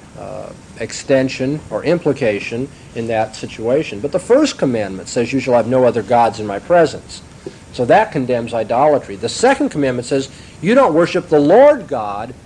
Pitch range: 125-170 Hz